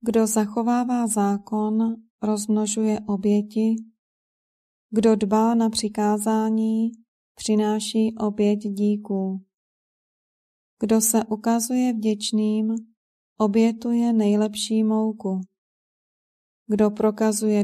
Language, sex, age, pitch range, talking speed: Czech, female, 30-49, 210-225 Hz, 70 wpm